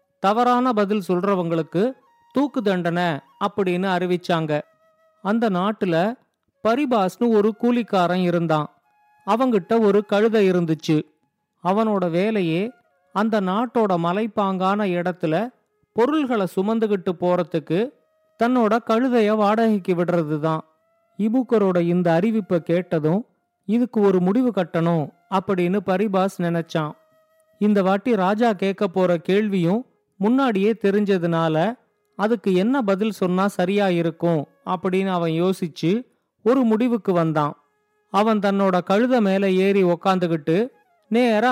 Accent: native